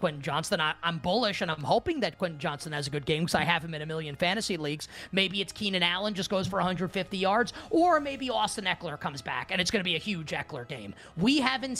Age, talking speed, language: 30-49, 250 wpm, English